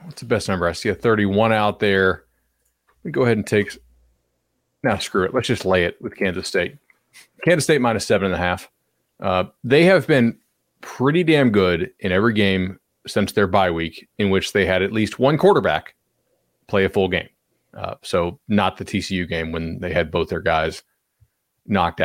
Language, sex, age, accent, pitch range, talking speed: English, male, 30-49, American, 90-110 Hz, 195 wpm